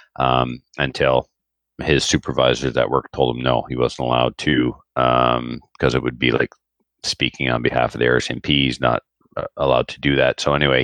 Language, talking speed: English, 190 wpm